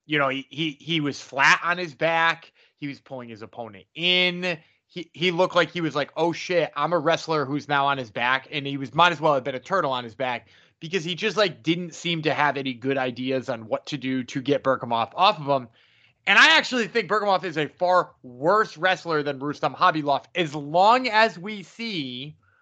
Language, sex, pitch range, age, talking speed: English, male, 145-190 Hz, 20-39, 225 wpm